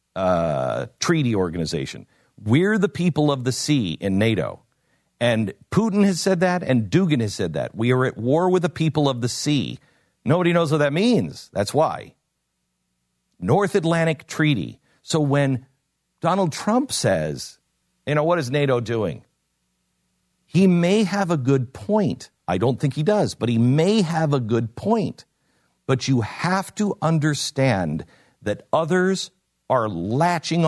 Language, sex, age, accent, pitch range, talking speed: English, male, 50-69, American, 115-165 Hz, 155 wpm